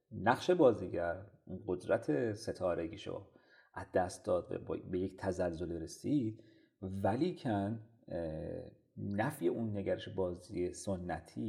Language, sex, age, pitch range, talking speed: Persian, male, 30-49, 95-115 Hz, 90 wpm